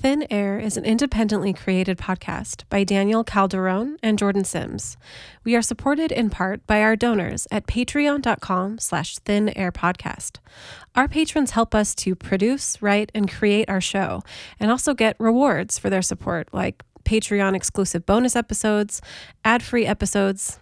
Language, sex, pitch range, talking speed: English, female, 185-225 Hz, 150 wpm